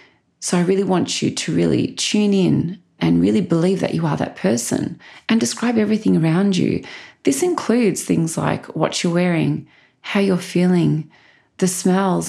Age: 30-49